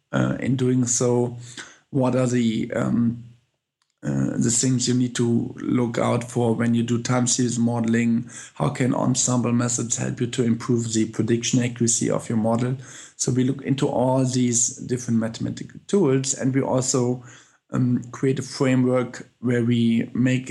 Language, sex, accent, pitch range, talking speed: English, male, German, 115-130 Hz, 160 wpm